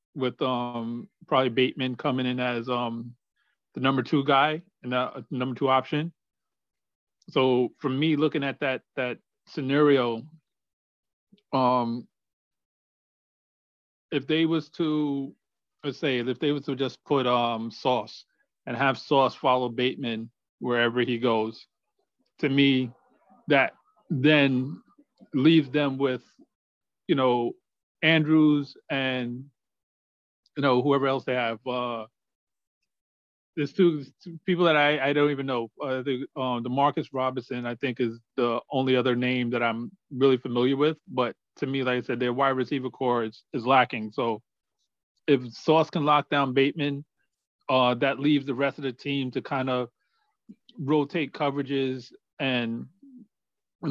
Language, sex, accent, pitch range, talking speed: English, male, American, 125-145 Hz, 145 wpm